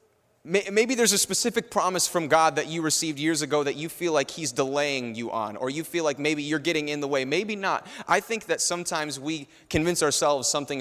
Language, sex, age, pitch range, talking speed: English, male, 30-49, 125-155 Hz, 220 wpm